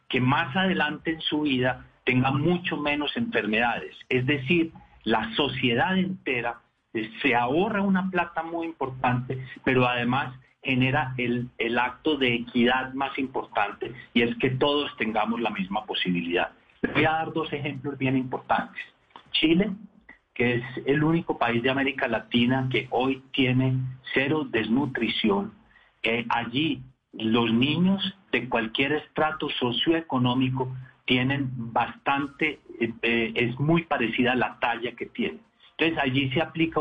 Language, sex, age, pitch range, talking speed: Spanish, male, 40-59, 120-150 Hz, 135 wpm